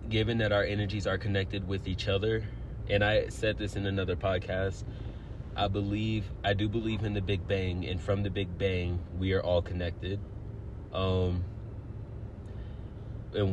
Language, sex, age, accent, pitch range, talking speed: English, male, 20-39, American, 95-110 Hz, 160 wpm